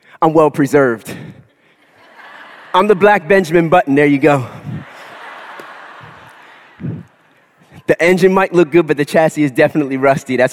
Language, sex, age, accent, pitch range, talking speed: English, male, 30-49, American, 130-170 Hz, 130 wpm